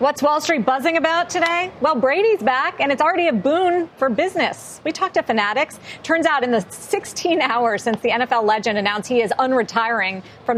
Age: 40-59